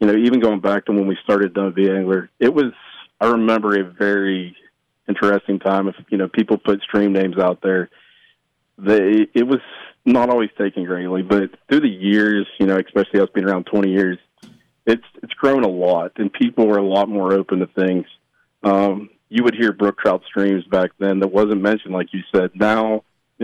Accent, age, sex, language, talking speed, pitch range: American, 40-59, male, English, 200 wpm, 95-110 Hz